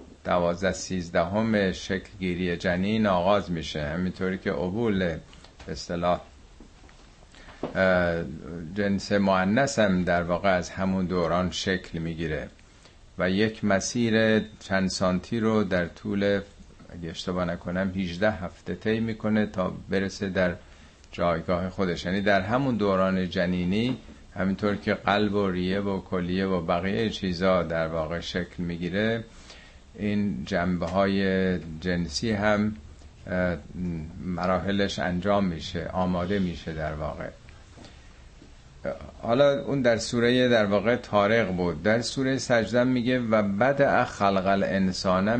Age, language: 50-69, Persian